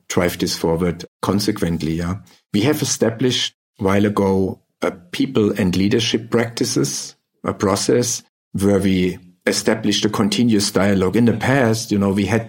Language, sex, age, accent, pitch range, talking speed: English, male, 50-69, German, 95-110 Hz, 150 wpm